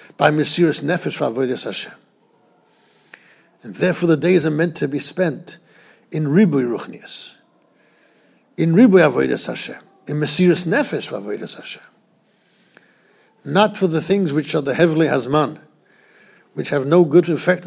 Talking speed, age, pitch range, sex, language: 135 wpm, 60-79, 150-195 Hz, male, English